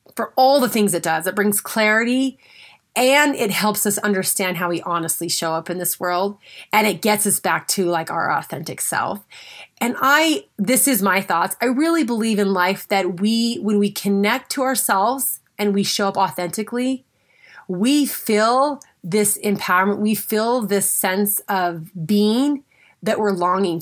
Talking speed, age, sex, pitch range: 170 wpm, 30-49, female, 190-235 Hz